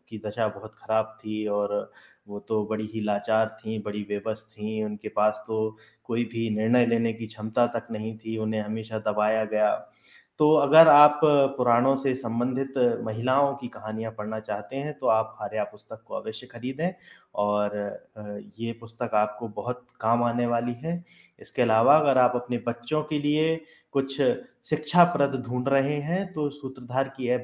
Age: 20-39